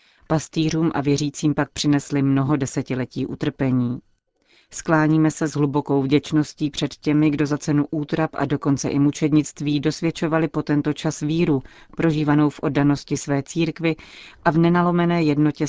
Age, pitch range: 30-49, 140-155 Hz